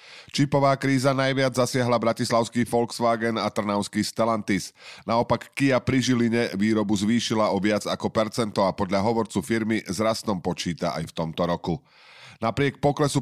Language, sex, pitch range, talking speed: Slovak, male, 100-120 Hz, 140 wpm